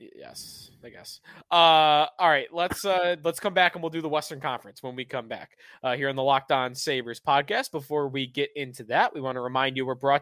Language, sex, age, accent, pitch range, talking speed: English, male, 20-39, American, 140-190 Hz, 240 wpm